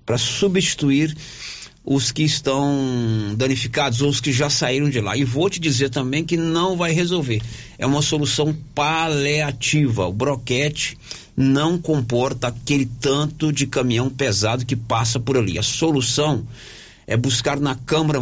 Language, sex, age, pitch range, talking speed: Portuguese, male, 50-69, 115-145 Hz, 150 wpm